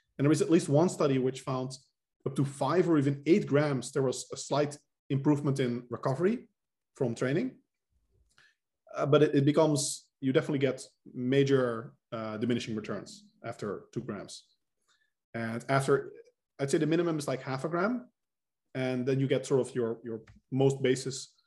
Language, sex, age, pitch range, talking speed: English, male, 20-39, 120-145 Hz, 170 wpm